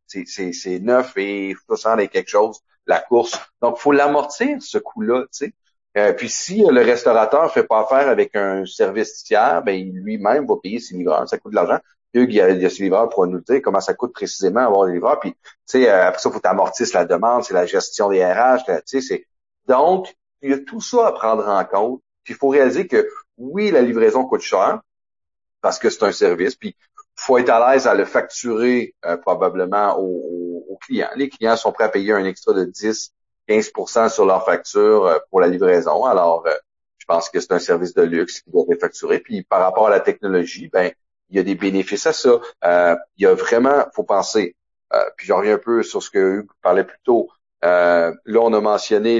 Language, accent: French, Canadian